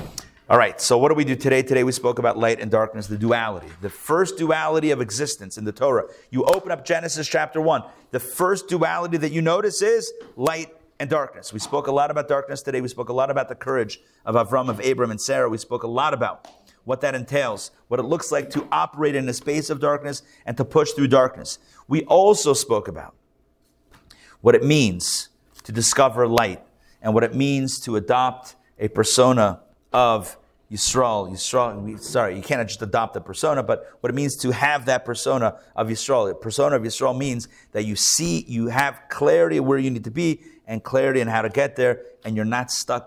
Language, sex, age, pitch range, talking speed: English, male, 30-49, 110-140 Hz, 215 wpm